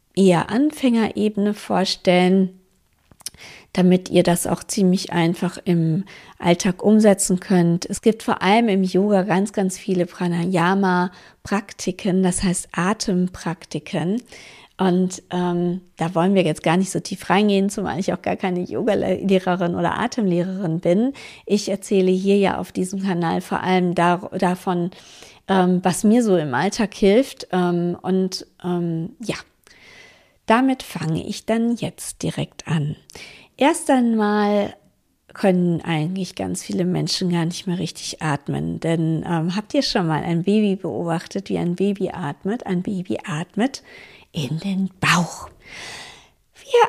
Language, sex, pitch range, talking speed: German, female, 175-205 Hz, 135 wpm